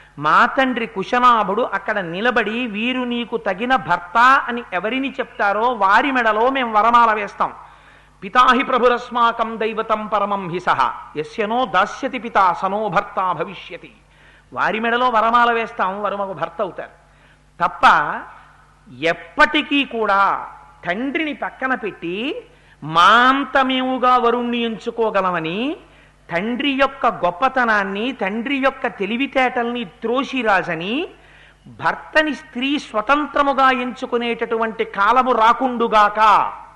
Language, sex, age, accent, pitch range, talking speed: Telugu, male, 50-69, native, 200-250 Hz, 100 wpm